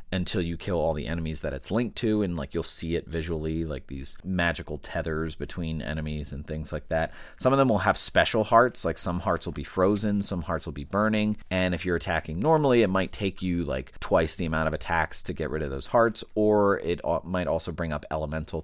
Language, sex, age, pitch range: English, male, 30-49, 75-95 Hz